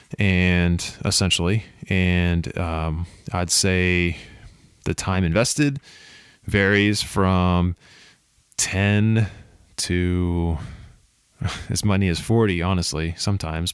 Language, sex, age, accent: English, male, 20-39, American